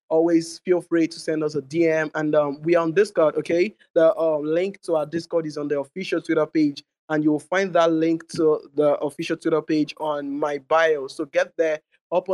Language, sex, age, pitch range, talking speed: English, male, 20-39, 150-170 Hz, 210 wpm